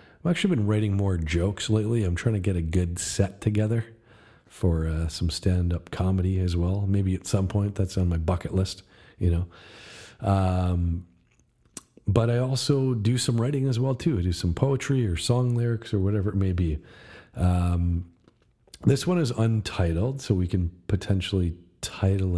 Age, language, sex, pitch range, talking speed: 40-59, English, male, 85-110 Hz, 175 wpm